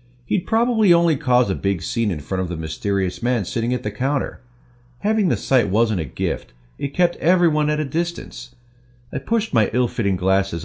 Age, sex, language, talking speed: 50-69, male, English, 190 wpm